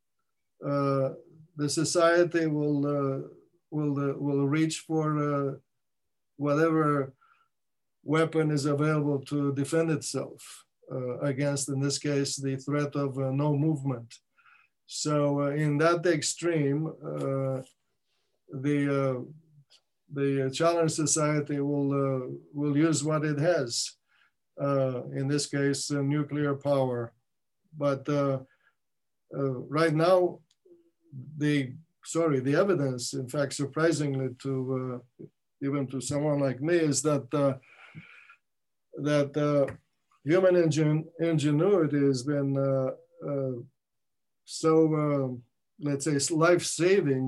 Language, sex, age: English, male, 50-69